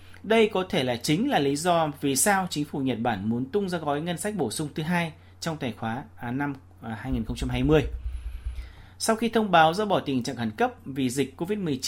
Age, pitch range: 30-49, 120-175 Hz